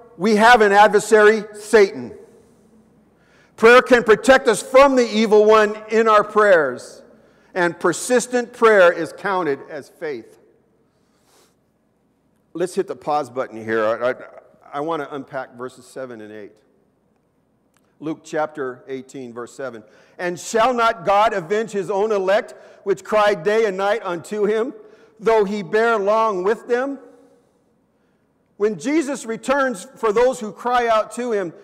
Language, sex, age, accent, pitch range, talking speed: English, male, 50-69, American, 195-240 Hz, 140 wpm